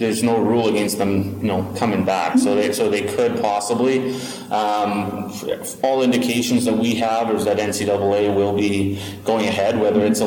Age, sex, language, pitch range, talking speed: 30-49, male, English, 100-120 Hz, 180 wpm